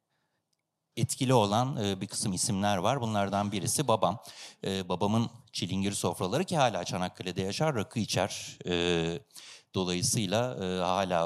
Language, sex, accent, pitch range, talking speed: Turkish, male, native, 95-145 Hz, 105 wpm